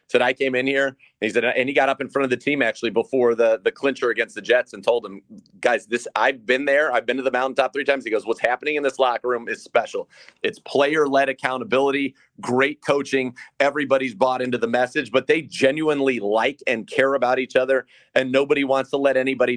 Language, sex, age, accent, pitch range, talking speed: English, male, 40-59, American, 120-135 Hz, 230 wpm